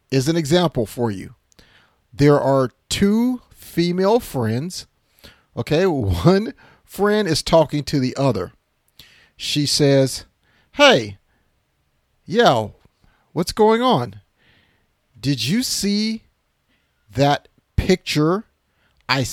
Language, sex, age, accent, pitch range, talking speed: English, male, 40-59, American, 110-165 Hz, 95 wpm